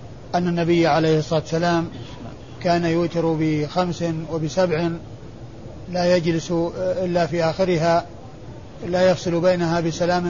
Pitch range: 130-185 Hz